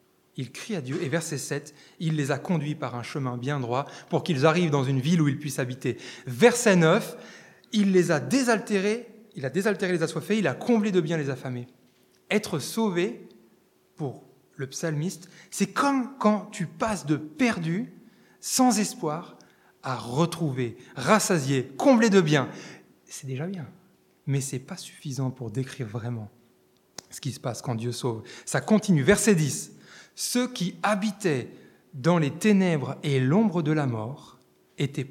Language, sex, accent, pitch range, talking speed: French, male, French, 135-210 Hz, 170 wpm